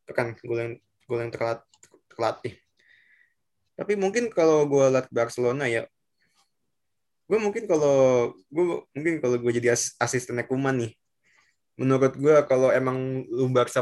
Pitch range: 115-130 Hz